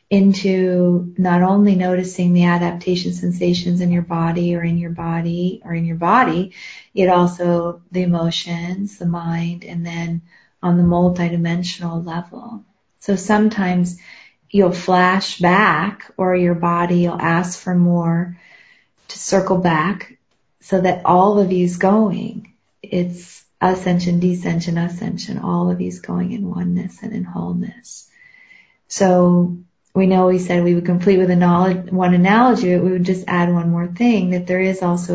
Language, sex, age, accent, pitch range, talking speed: English, female, 40-59, American, 175-195 Hz, 150 wpm